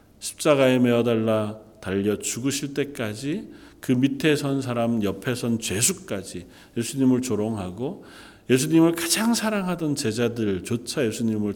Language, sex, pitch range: Korean, male, 100-140 Hz